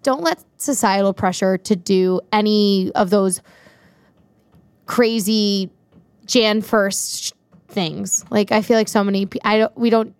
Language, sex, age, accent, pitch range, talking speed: English, female, 20-39, American, 185-220 Hz, 135 wpm